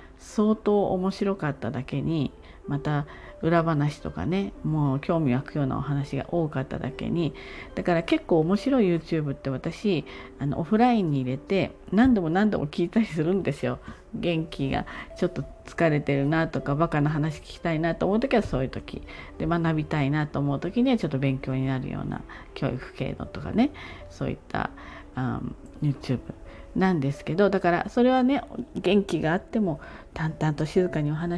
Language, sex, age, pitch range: Japanese, female, 40-59, 140-200 Hz